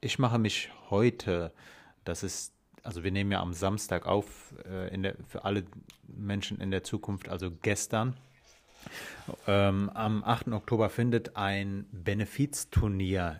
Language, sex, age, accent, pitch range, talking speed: German, male, 30-49, German, 95-105 Hz, 140 wpm